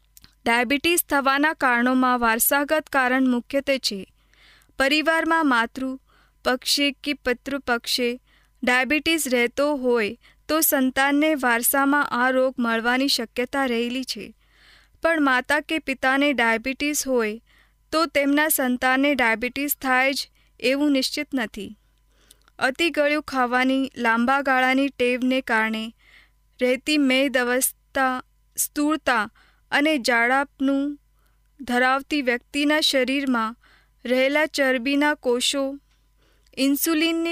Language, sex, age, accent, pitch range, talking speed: Hindi, female, 20-39, native, 245-290 Hz, 85 wpm